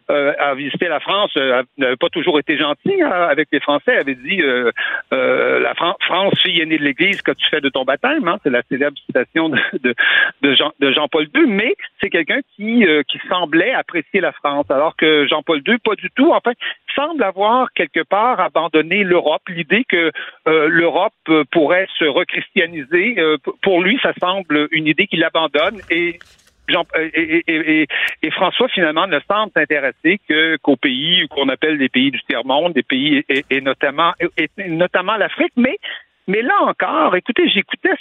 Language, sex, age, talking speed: French, male, 60-79, 180 wpm